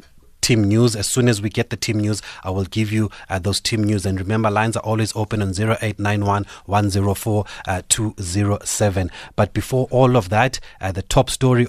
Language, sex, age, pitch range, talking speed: English, male, 30-49, 100-115 Hz, 190 wpm